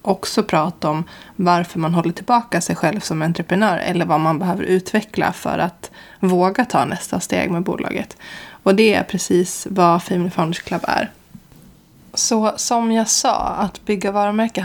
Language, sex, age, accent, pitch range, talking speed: Swedish, female, 20-39, native, 170-205 Hz, 165 wpm